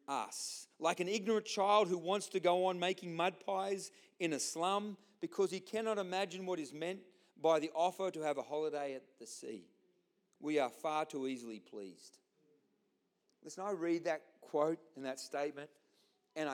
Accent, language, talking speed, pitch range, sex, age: Australian, English, 175 wpm, 155-205 Hz, male, 40-59